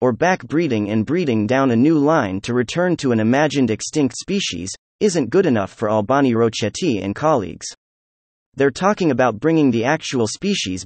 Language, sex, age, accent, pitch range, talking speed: English, male, 30-49, American, 105-155 Hz, 165 wpm